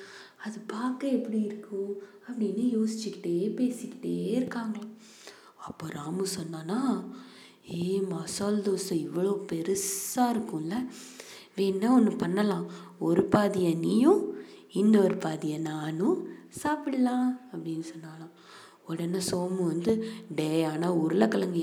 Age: 20-39